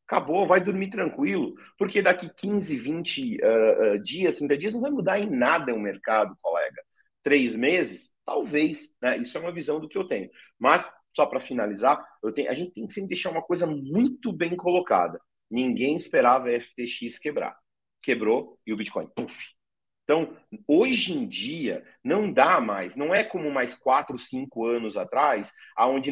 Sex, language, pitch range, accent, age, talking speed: male, Portuguese, 130-220 Hz, Brazilian, 40-59, 175 wpm